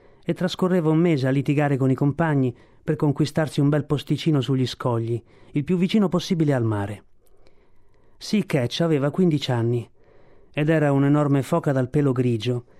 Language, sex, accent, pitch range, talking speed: Italian, male, native, 120-160 Hz, 155 wpm